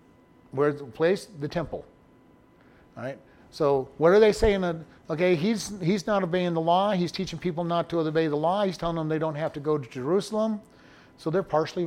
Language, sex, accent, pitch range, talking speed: English, male, American, 140-175 Hz, 200 wpm